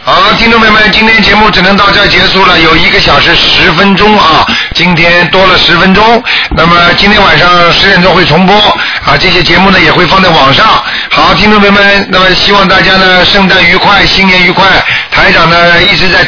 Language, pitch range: Chinese, 175-205 Hz